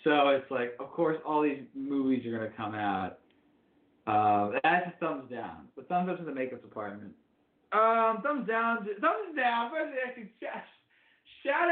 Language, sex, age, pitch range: English, male, 20-39, 135-205 Hz